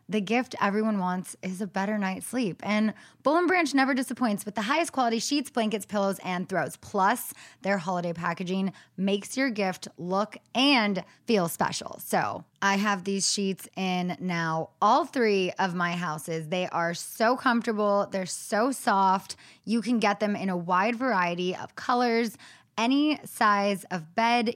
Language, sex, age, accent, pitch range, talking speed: English, female, 20-39, American, 180-225 Hz, 165 wpm